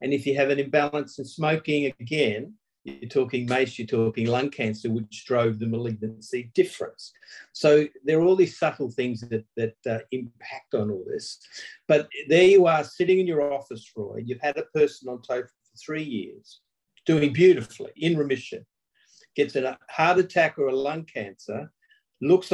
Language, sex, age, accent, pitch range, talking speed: English, male, 50-69, Australian, 125-160 Hz, 175 wpm